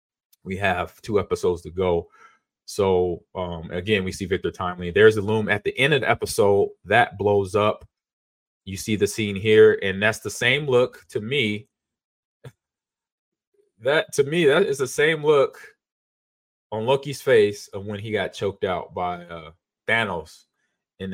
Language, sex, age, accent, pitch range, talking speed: English, male, 30-49, American, 95-155 Hz, 165 wpm